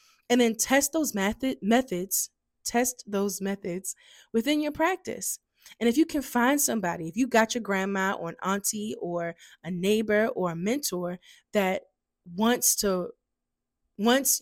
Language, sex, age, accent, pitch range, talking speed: English, female, 20-39, American, 185-225 Hz, 145 wpm